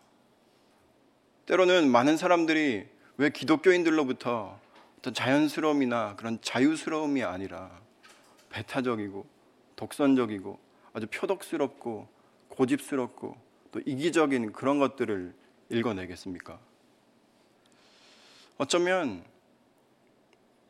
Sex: male